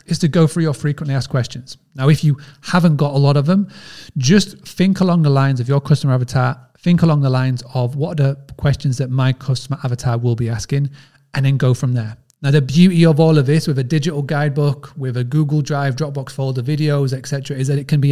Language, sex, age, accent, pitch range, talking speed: English, male, 30-49, British, 135-155 Hz, 235 wpm